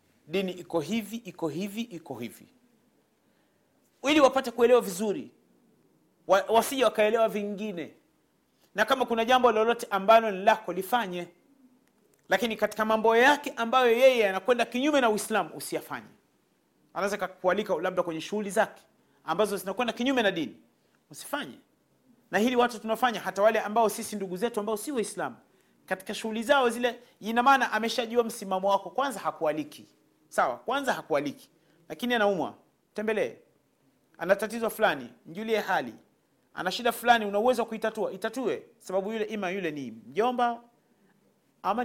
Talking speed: 135 wpm